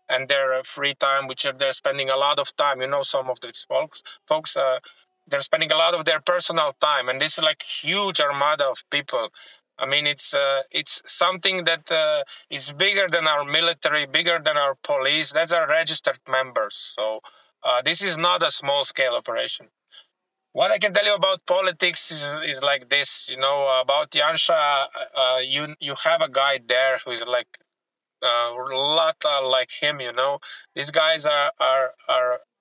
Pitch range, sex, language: 135-170 Hz, male, English